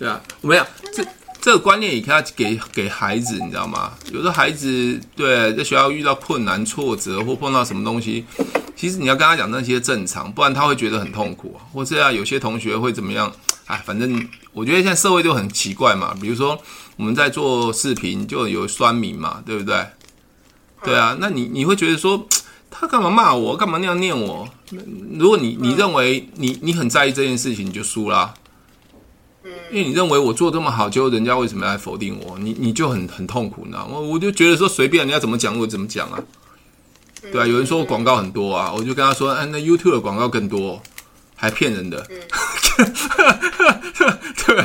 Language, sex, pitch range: Chinese, male, 115-180 Hz